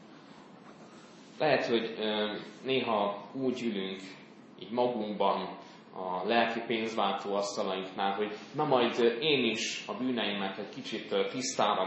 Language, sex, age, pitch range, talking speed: Hungarian, male, 20-39, 105-125 Hz, 105 wpm